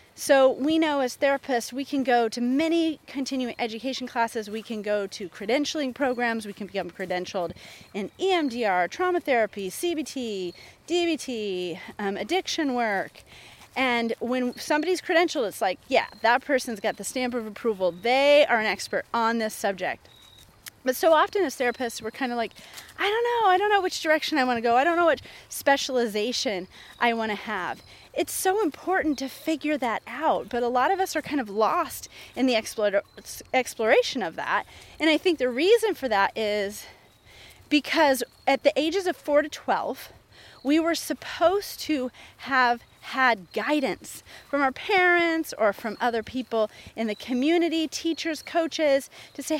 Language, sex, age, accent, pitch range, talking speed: English, female, 30-49, American, 225-310 Hz, 170 wpm